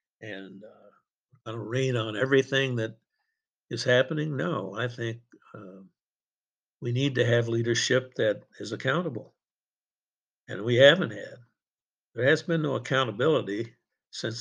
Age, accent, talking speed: 60-79, American, 135 wpm